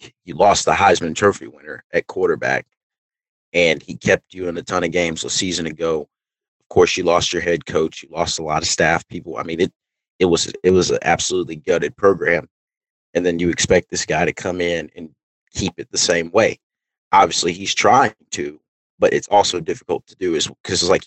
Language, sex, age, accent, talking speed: English, male, 30-49, American, 210 wpm